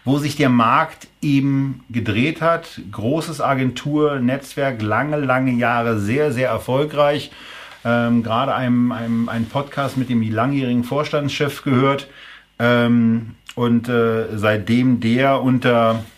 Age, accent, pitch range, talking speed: 40-59, German, 115-135 Hz, 120 wpm